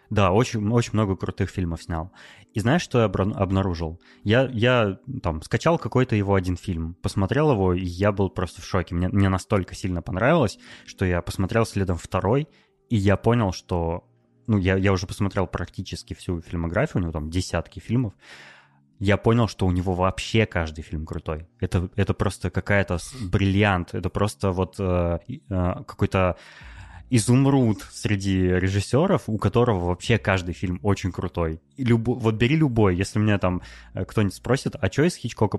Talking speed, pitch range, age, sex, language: 170 wpm, 90-115 Hz, 20-39, male, Russian